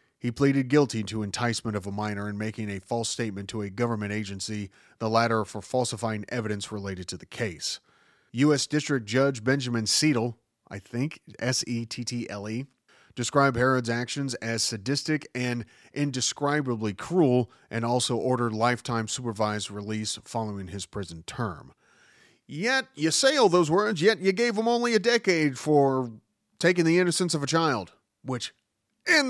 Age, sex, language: 30-49, male, English